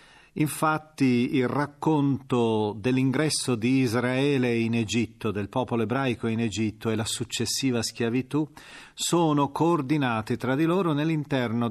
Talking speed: 120 wpm